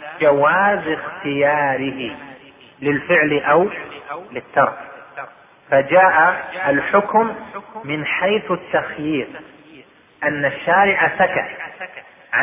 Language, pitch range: Arabic, 140-170 Hz